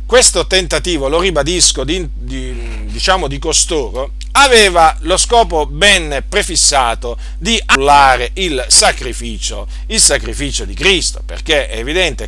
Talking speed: 120 wpm